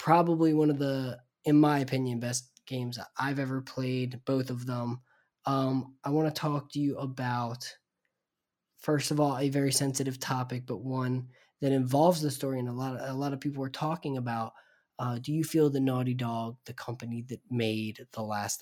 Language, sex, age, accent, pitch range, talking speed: English, male, 20-39, American, 120-140 Hz, 185 wpm